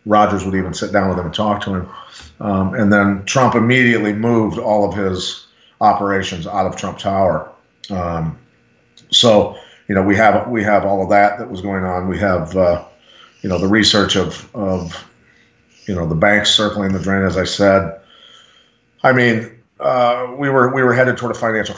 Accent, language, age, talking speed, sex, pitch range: American, English, 40-59, 195 wpm, male, 90-105 Hz